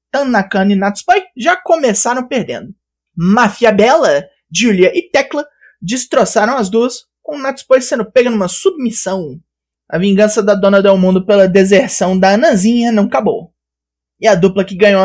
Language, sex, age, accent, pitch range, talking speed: Portuguese, male, 20-39, Brazilian, 185-265 Hz, 150 wpm